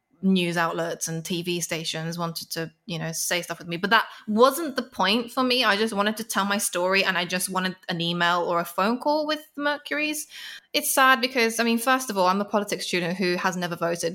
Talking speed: 240 wpm